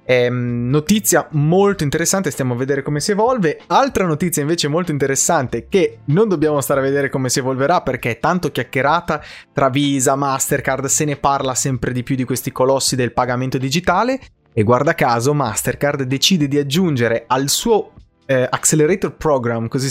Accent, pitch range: native, 130-155 Hz